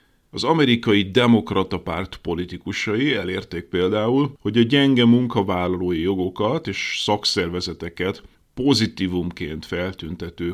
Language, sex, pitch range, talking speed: Hungarian, male, 90-115 Hz, 90 wpm